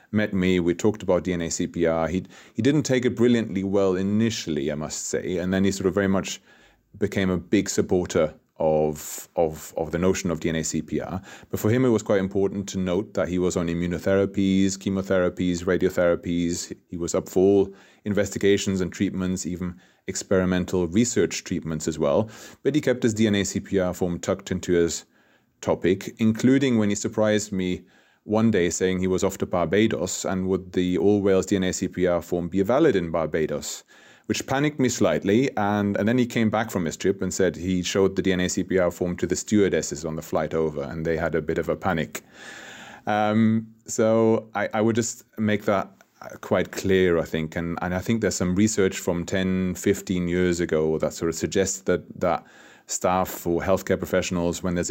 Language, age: English, 30-49